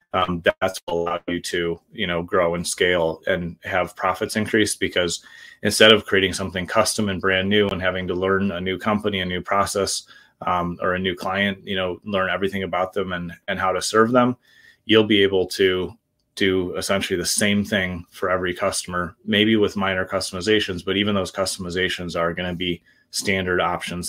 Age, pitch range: 30-49, 90-100 Hz